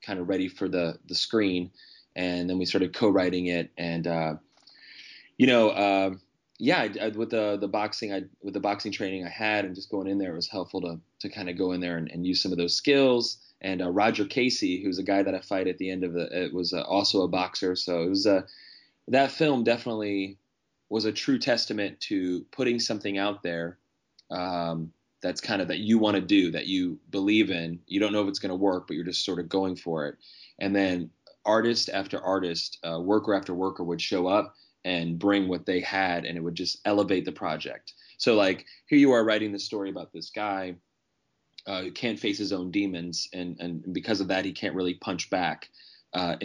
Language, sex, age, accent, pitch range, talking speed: English, male, 20-39, American, 90-105 Hz, 225 wpm